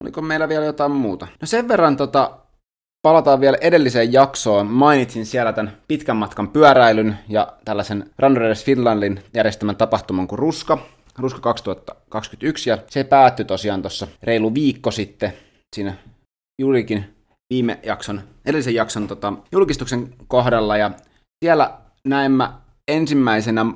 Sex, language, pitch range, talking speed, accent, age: male, Finnish, 105-130 Hz, 130 wpm, native, 20-39